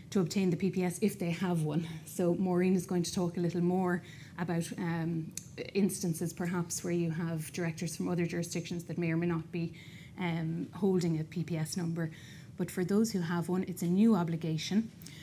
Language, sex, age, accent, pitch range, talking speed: English, female, 20-39, Irish, 165-185 Hz, 190 wpm